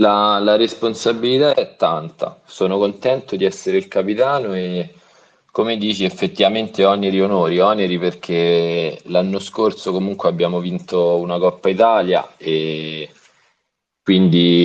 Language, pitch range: Italian, 85-100 Hz